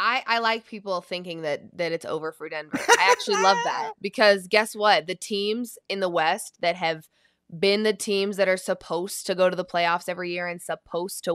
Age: 20-39